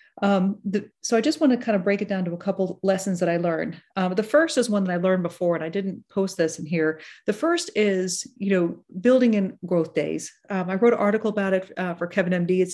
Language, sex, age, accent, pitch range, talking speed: English, female, 40-59, American, 175-220 Hz, 265 wpm